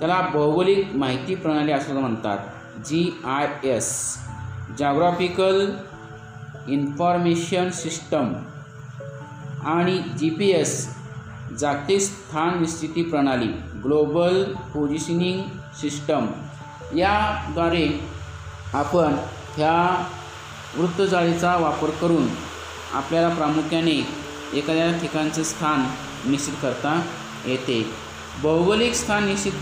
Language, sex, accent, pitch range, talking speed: Marathi, male, native, 135-170 Hz, 80 wpm